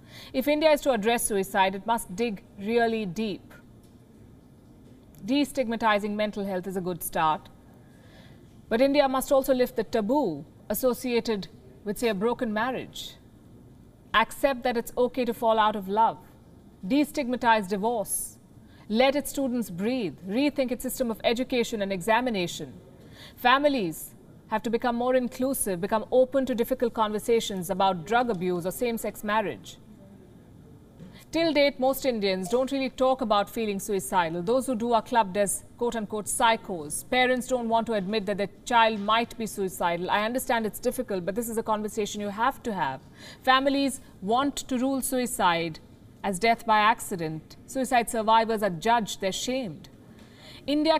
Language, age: English, 50-69